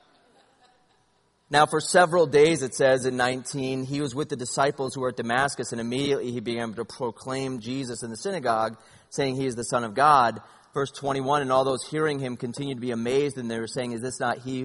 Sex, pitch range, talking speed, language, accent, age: male, 125-170 Hz, 215 wpm, English, American, 30-49